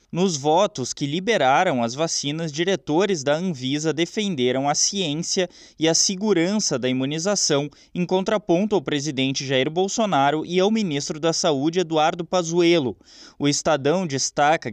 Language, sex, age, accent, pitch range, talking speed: Portuguese, male, 20-39, Brazilian, 150-200 Hz, 135 wpm